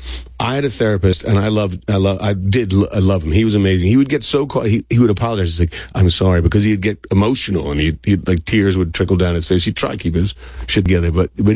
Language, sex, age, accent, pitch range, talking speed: English, male, 40-59, American, 80-100 Hz, 285 wpm